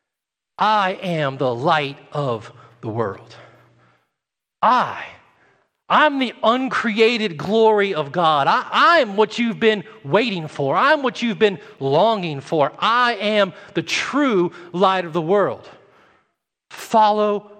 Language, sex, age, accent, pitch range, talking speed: English, male, 40-59, American, 175-250 Hz, 120 wpm